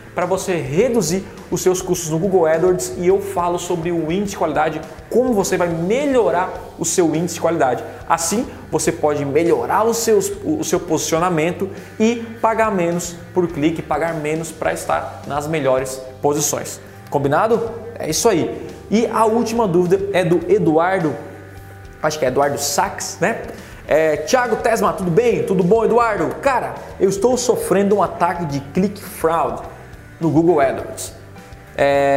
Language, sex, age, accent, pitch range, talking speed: Portuguese, male, 20-39, Brazilian, 155-200 Hz, 160 wpm